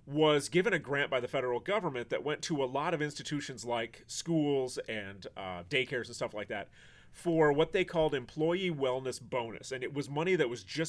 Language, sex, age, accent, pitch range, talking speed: English, male, 30-49, American, 120-160 Hz, 210 wpm